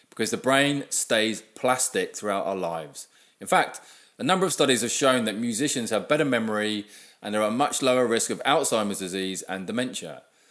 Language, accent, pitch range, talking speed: English, British, 105-150 Hz, 185 wpm